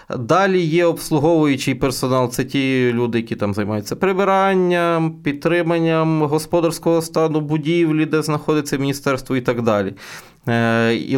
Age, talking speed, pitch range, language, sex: 20-39, 120 wpm, 125-170 Hz, Ukrainian, male